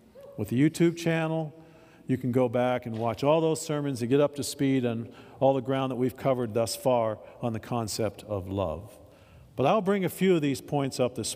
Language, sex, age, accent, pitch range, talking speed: English, male, 50-69, American, 120-155 Hz, 220 wpm